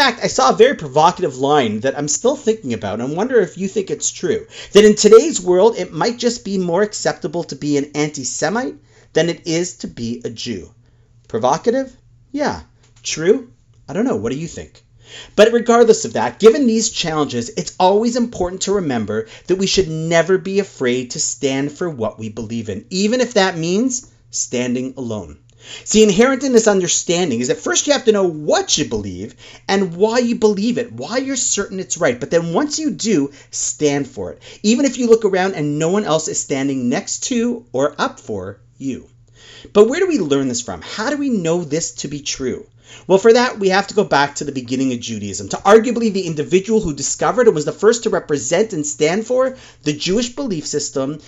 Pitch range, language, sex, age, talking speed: 130-215 Hz, English, male, 30-49, 210 wpm